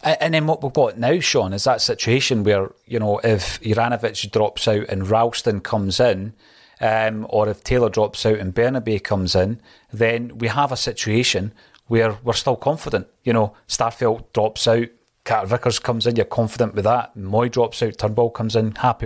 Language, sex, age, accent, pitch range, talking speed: English, male, 30-49, British, 110-130 Hz, 190 wpm